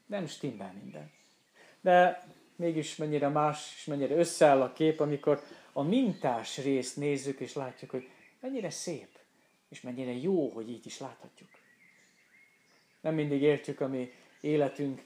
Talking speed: 140 wpm